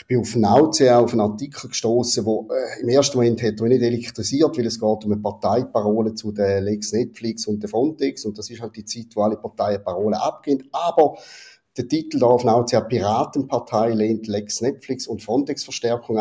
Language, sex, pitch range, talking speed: German, male, 110-130 Hz, 195 wpm